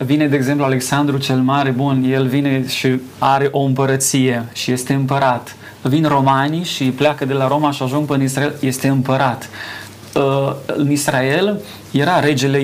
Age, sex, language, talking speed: 30-49, male, Romanian, 155 wpm